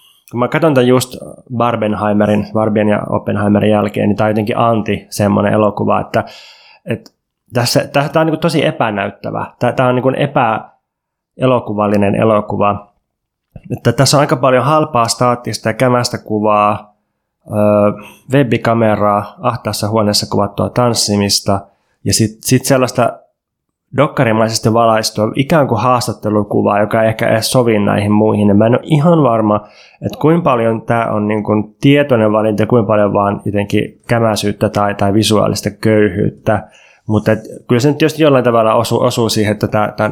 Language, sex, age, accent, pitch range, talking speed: Finnish, male, 20-39, native, 105-120 Hz, 145 wpm